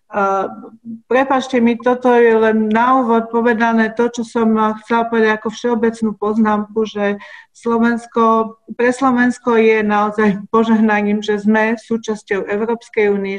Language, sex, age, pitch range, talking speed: Slovak, female, 40-59, 205-225 Hz, 130 wpm